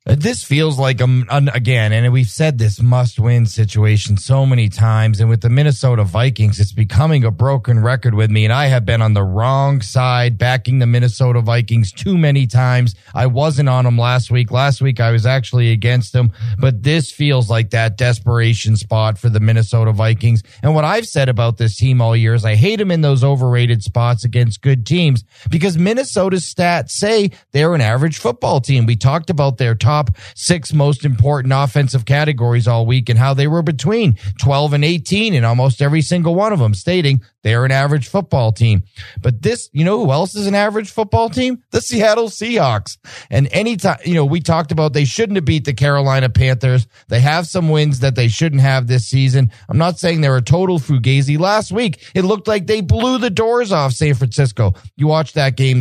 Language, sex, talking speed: English, male, 205 wpm